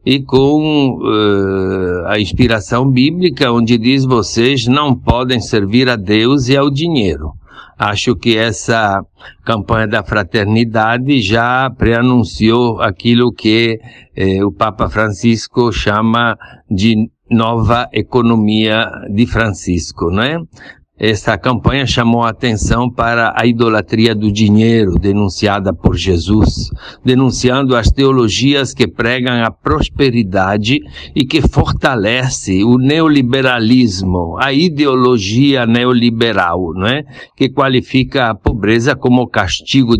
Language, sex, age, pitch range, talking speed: English, male, 60-79, 105-130 Hz, 110 wpm